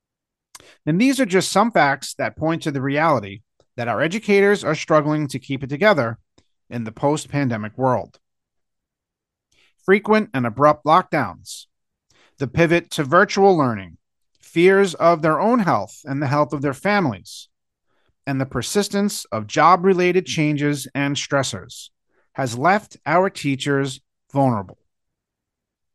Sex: male